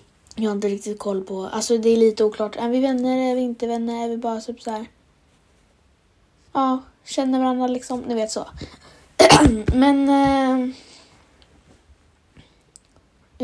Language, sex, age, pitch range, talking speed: Swedish, female, 20-39, 210-255 Hz, 145 wpm